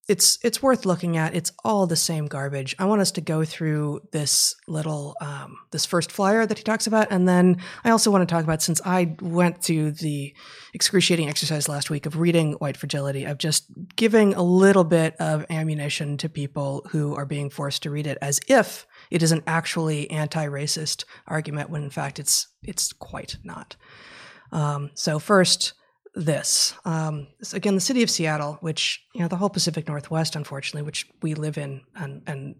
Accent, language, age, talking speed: American, English, 30-49, 190 wpm